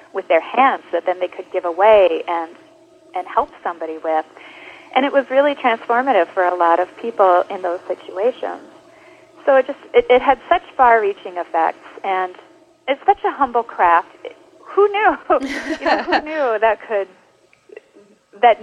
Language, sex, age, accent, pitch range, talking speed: English, female, 30-49, American, 200-310 Hz, 165 wpm